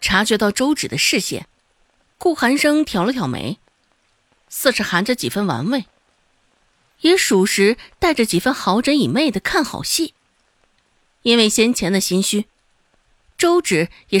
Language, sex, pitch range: Chinese, female, 185-275 Hz